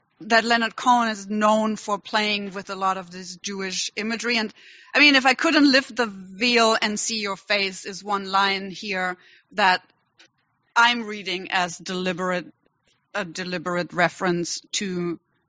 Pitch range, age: 190-235 Hz, 30-49